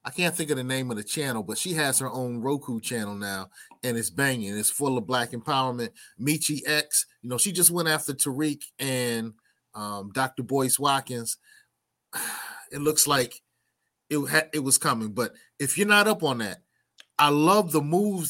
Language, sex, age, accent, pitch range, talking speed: English, male, 30-49, American, 130-175 Hz, 185 wpm